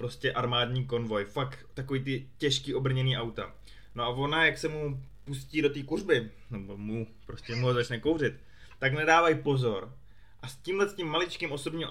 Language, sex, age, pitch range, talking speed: Czech, male, 20-39, 120-145 Hz, 160 wpm